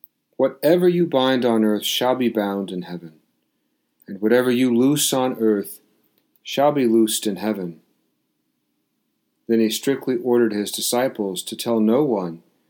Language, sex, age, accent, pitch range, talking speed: English, male, 40-59, American, 105-125 Hz, 145 wpm